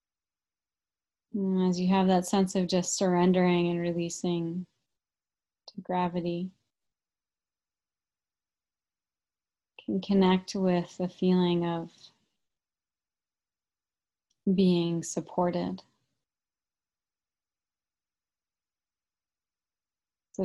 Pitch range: 125-185 Hz